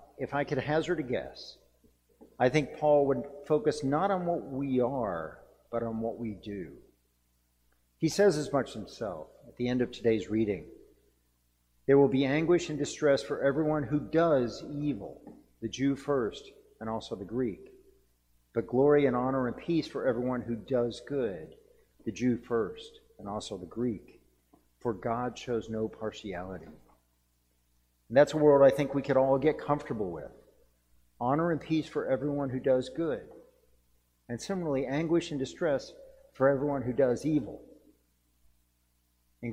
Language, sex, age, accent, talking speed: English, male, 50-69, American, 160 wpm